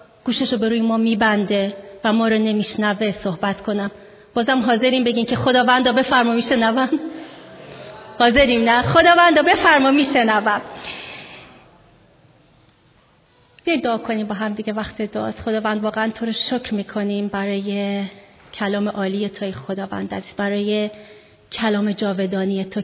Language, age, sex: Persian, 30-49, female